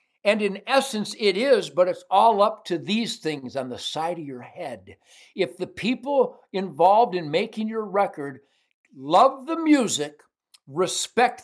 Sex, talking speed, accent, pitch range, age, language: male, 155 wpm, American, 175-240 Hz, 60-79, English